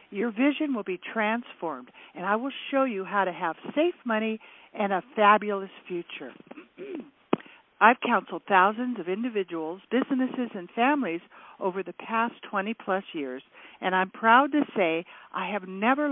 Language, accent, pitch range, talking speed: English, American, 185-270 Hz, 155 wpm